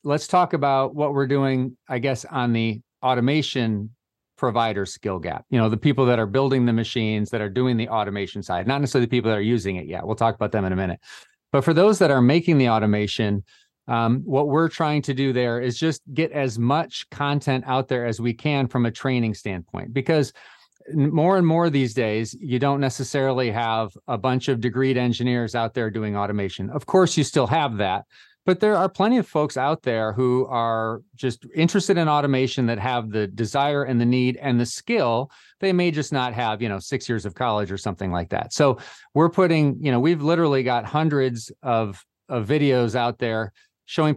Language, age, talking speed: English, 40-59, 210 wpm